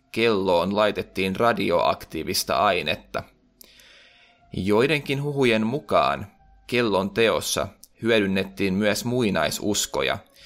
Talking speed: 70 wpm